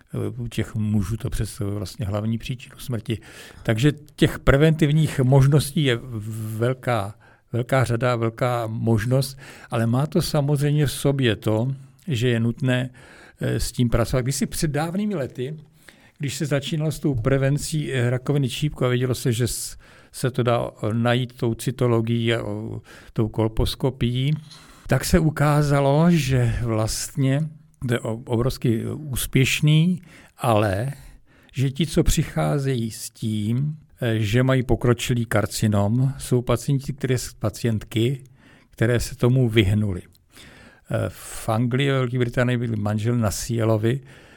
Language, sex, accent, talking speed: Czech, male, native, 125 wpm